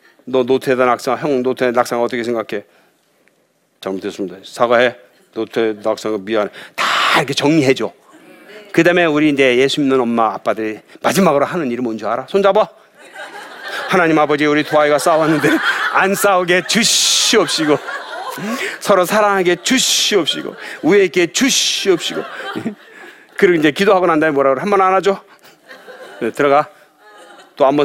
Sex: male